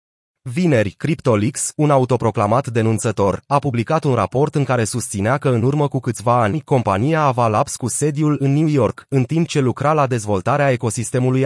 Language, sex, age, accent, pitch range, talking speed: Romanian, male, 30-49, native, 115-145 Hz, 170 wpm